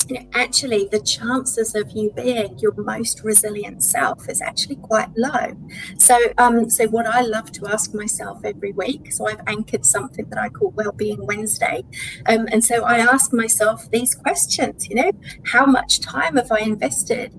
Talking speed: 175 wpm